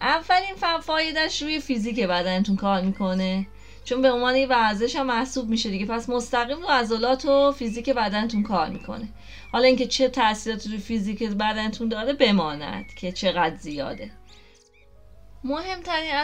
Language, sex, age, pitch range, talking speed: English, female, 30-49, 195-260 Hz, 140 wpm